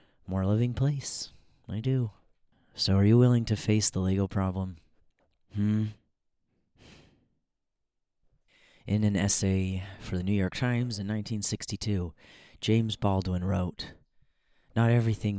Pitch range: 95-120 Hz